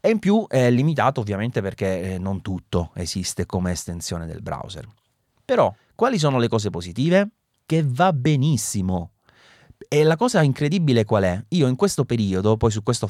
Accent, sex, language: native, male, Italian